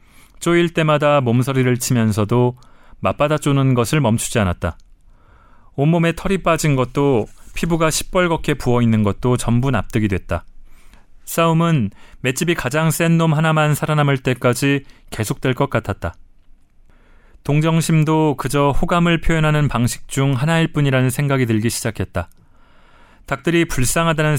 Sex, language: male, Korean